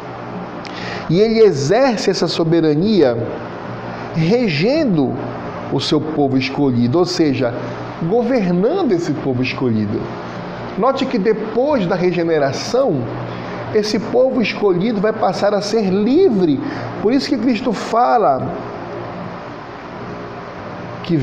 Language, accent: Portuguese, Brazilian